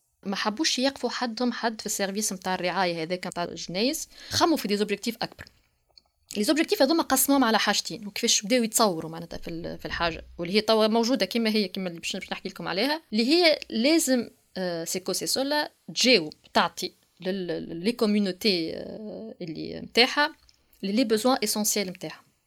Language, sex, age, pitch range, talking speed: French, female, 20-39, 185-255 Hz, 145 wpm